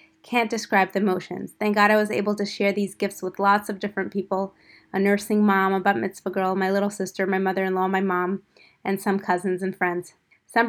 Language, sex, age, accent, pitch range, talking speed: English, female, 20-39, American, 190-230 Hz, 215 wpm